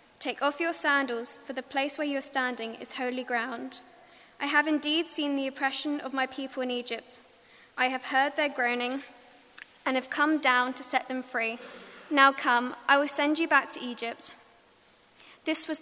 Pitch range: 245-285 Hz